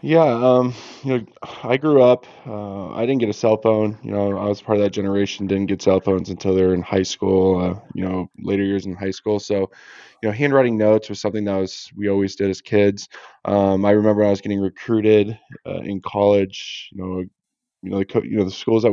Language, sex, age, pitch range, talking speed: English, male, 20-39, 90-105 Hz, 240 wpm